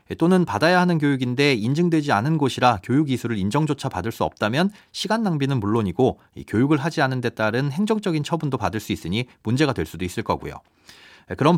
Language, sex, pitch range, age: Korean, male, 110-165 Hz, 30-49